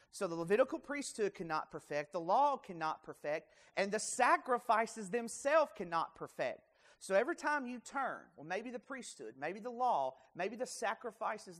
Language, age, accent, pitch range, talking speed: English, 40-59, American, 165-240 Hz, 160 wpm